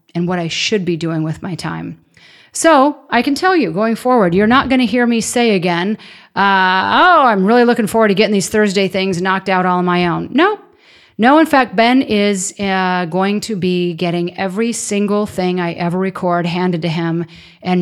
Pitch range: 170-210 Hz